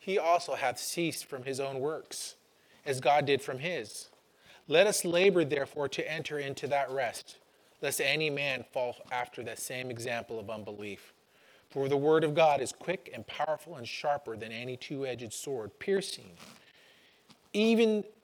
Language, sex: English, male